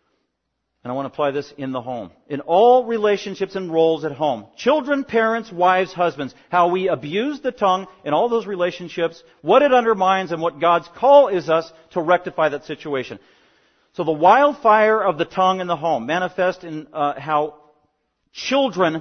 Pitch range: 140-190 Hz